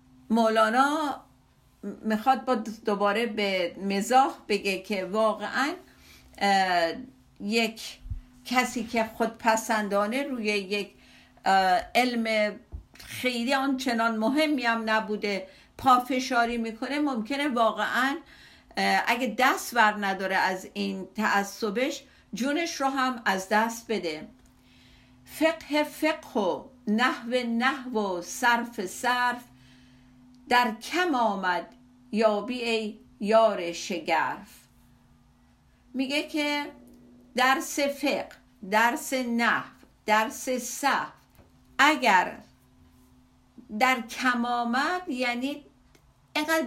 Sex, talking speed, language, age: female, 85 wpm, Persian, 50-69